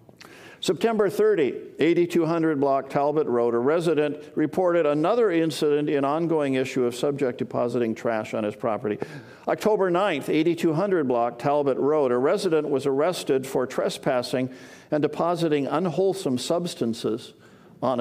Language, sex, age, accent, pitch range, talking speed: English, male, 50-69, American, 115-150 Hz, 125 wpm